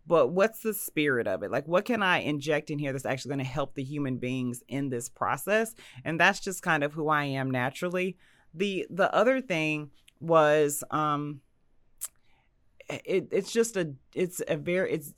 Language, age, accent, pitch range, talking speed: English, 30-49, American, 135-165 Hz, 185 wpm